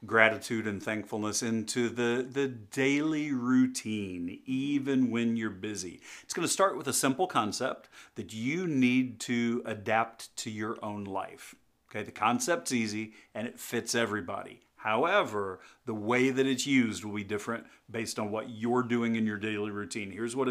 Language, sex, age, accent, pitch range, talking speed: English, male, 50-69, American, 110-135 Hz, 165 wpm